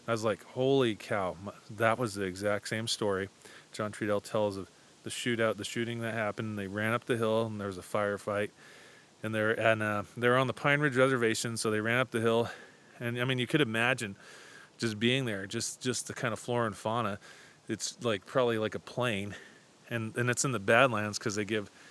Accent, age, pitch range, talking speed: American, 30-49, 105-120 Hz, 215 wpm